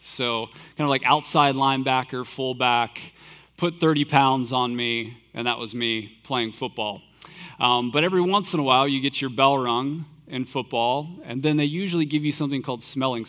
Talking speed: 185 wpm